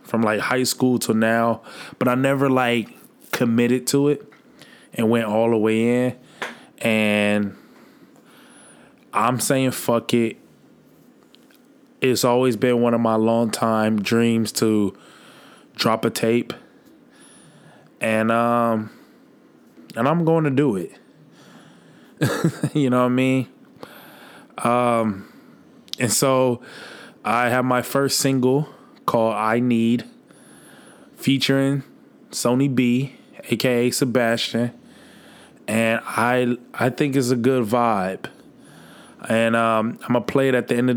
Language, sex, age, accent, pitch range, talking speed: English, male, 20-39, American, 115-130 Hz, 125 wpm